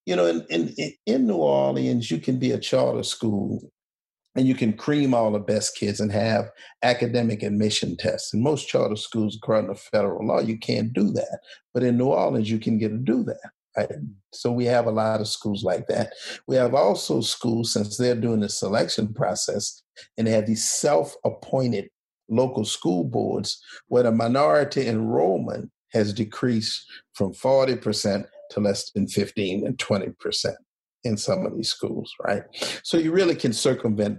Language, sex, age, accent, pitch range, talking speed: English, male, 50-69, American, 110-130 Hz, 175 wpm